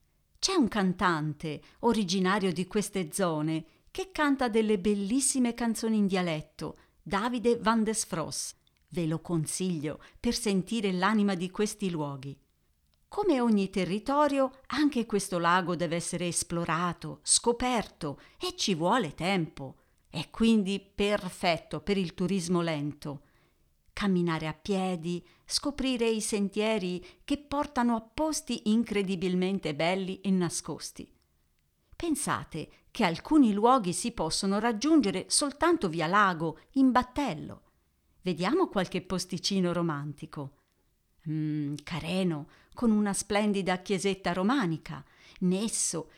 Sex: female